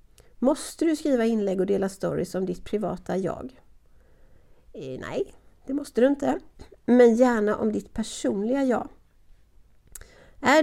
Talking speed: 130 wpm